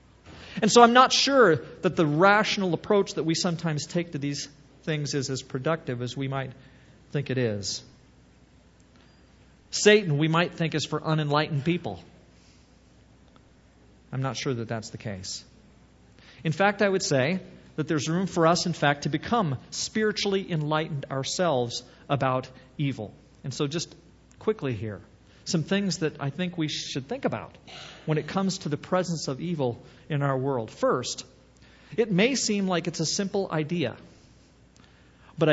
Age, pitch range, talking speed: 40-59, 125-185 Hz, 160 wpm